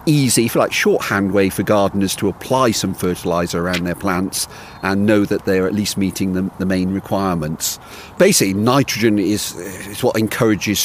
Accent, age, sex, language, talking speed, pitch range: British, 40-59, male, English, 170 wpm, 90-105 Hz